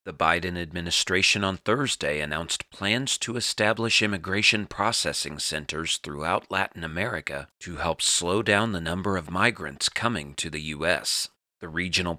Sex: male